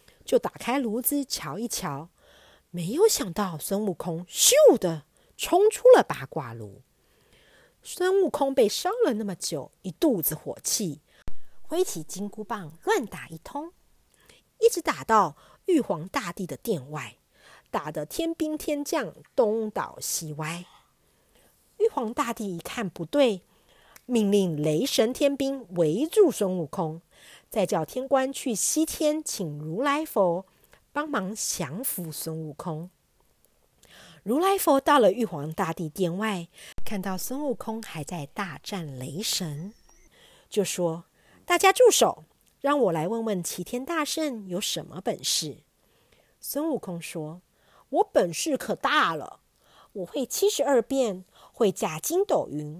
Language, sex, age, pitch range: Chinese, female, 50-69, 170-285 Hz